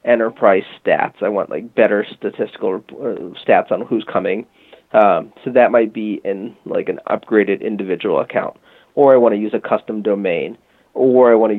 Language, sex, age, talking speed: English, male, 30-49, 175 wpm